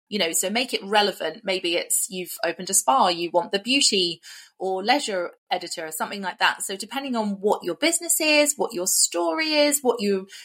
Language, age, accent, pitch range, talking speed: English, 30-49, British, 170-215 Hz, 205 wpm